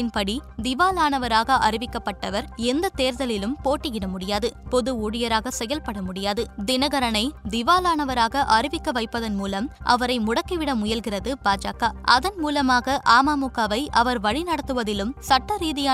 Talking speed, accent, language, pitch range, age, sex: 100 wpm, native, Tamil, 220-270 Hz, 20-39, female